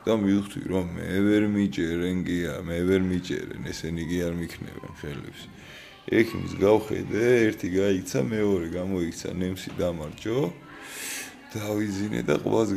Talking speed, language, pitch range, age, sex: 125 wpm, English, 85-100 Hz, 20-39, male